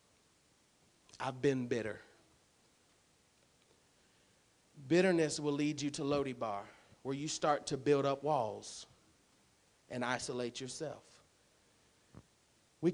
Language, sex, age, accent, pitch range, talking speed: English, male, 30-49, American, 190-245 Hz, 95 wpm